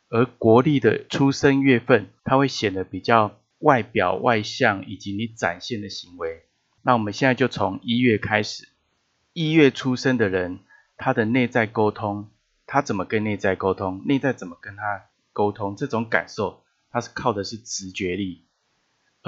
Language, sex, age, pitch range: Chinese, male, 30-49, 100-120 Hz